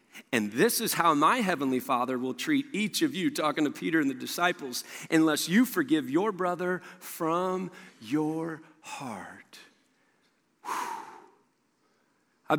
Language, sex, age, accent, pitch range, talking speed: English, male, 40-59, American, 155-235 Hz, 130 wpm